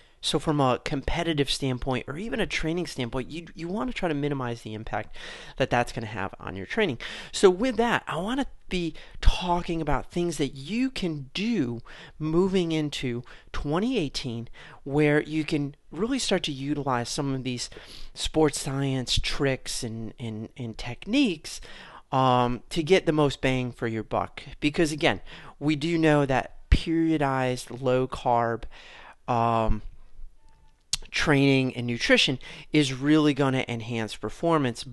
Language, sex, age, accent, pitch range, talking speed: English, male, 40-59, American, 120-160 Hz, 150 wpm